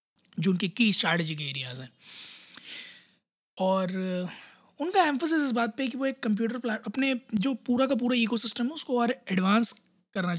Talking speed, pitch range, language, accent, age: 180 wpm, 180-235 Hz, Hindi, native, 20-39